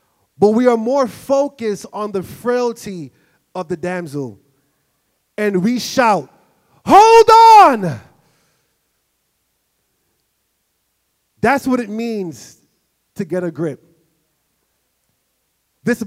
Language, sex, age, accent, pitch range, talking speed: English, male, 30-49, American, 140-195 Hz, 95 wpm